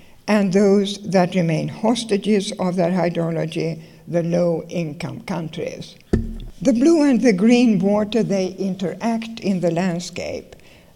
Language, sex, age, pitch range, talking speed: English, female, 60-79, 175-215 Hz, 120 wpm